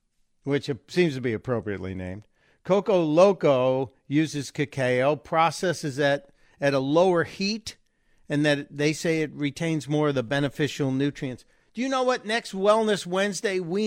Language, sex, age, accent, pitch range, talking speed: English, male, 50-69, American, 140-180 Hz, 150 wpm